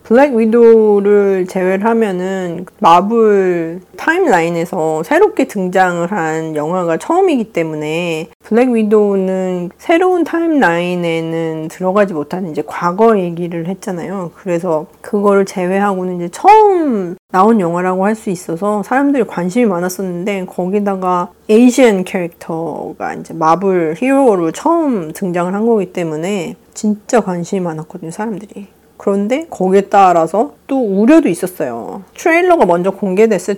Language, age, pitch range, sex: Korean, 40-59, 175-225 Hz, female